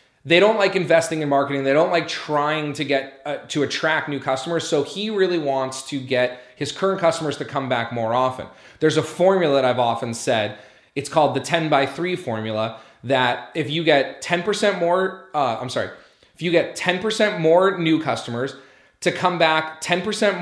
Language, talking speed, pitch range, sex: English, 190 wpm, 125-165 Hz, male